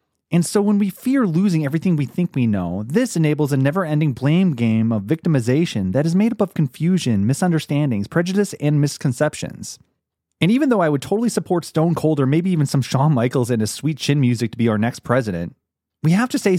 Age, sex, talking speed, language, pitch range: 30-49, male, 210 wpm, English, 130-185 Hz